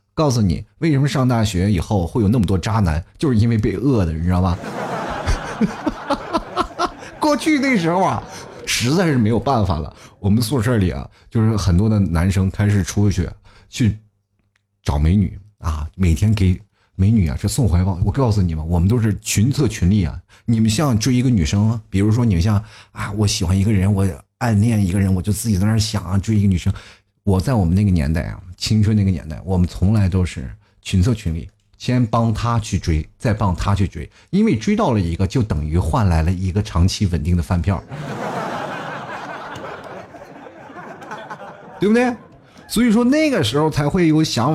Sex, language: male, Chinese